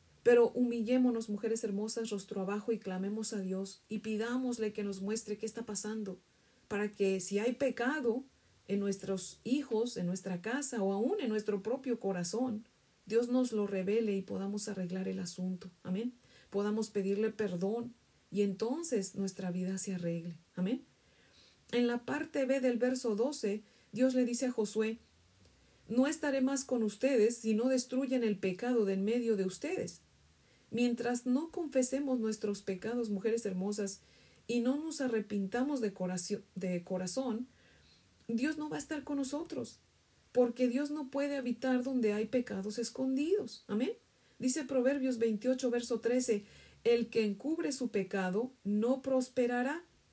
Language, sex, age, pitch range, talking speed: Spanish, female, 40-59, 200-255 Hz, 150 wpm